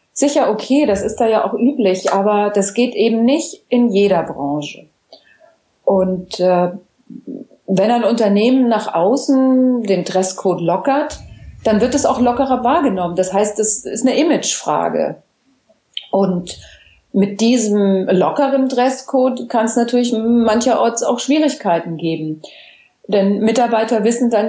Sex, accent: female, German